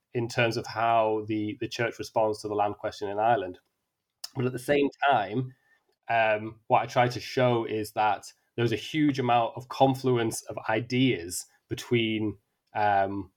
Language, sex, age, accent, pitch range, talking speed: English, male, 20-39, British, 110-135 Hz, 165 wpm